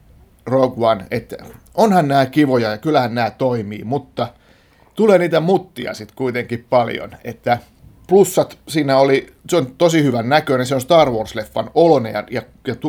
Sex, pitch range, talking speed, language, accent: male, 105-130 Hz, 155 wpm, Finnish, native